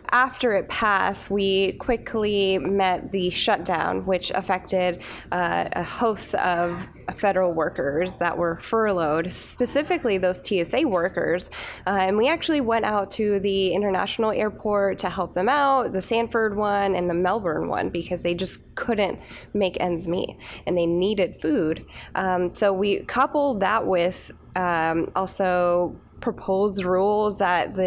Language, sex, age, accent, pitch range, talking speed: English, female, 10-29, American, 180-210 Hz, 140 wpm